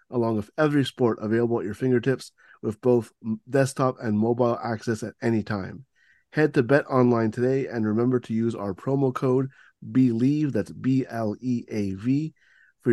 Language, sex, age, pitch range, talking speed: English, male, 30-49, 115-130 Hz, 170 wpm